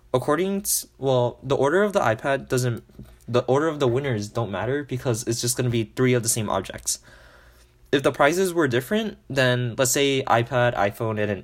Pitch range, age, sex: 110-145 Hz, 20-39, male